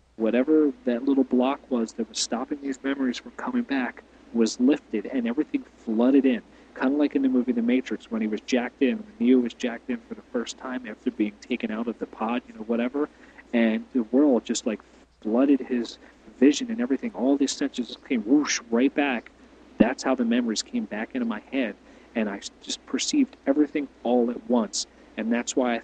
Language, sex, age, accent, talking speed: English, male, 40-59, American, 205 wpm